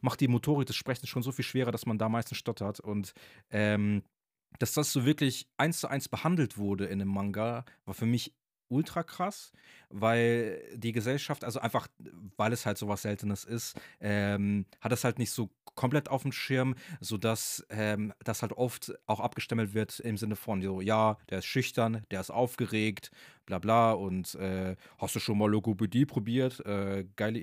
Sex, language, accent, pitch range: male, German, German, 105-135 Hz